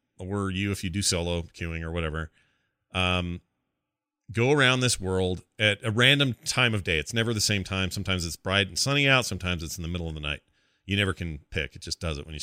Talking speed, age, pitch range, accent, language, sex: 235 wpm, 30-49, 95-120 Hz, American, English, male